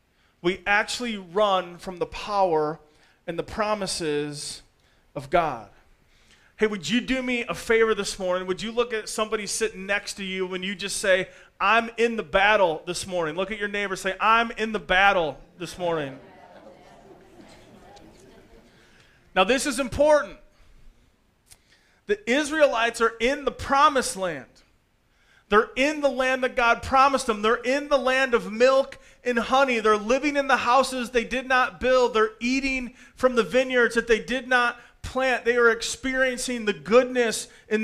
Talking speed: 165 wpm